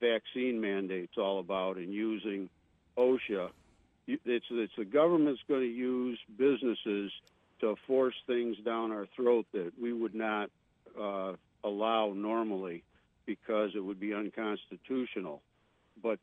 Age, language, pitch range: 60-79, English, 100-120 Hz